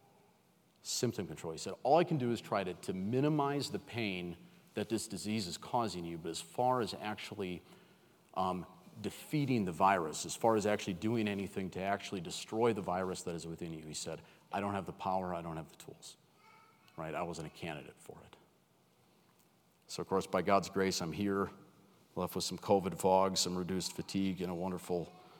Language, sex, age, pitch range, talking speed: English, male, 40-59, 90-110 Hz, 195 wpm